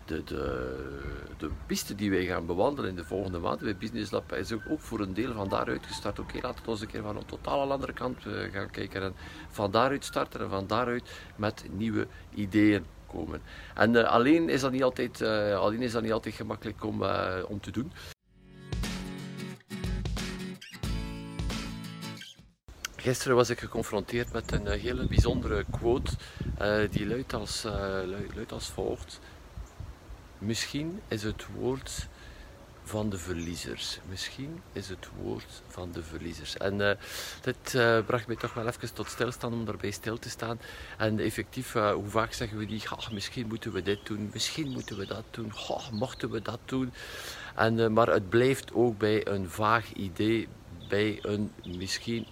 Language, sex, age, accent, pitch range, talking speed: Dutch, male, 50-69, Swiss, 95-115 Hz, 175 wpm